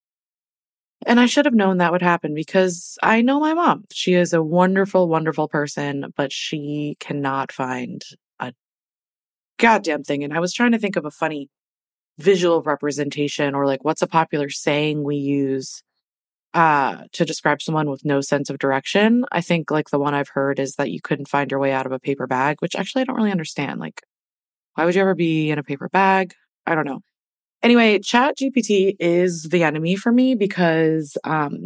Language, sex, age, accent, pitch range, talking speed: English, female, 20-39, American, 145-195 Hz, 190 wpm